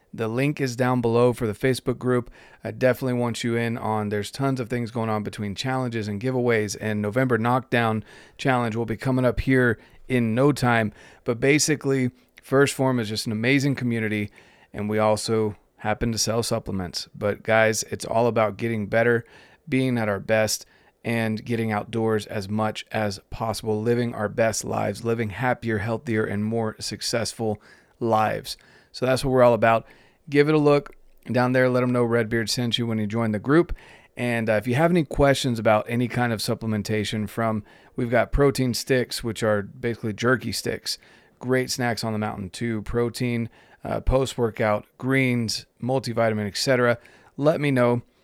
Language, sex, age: English, male, 30-49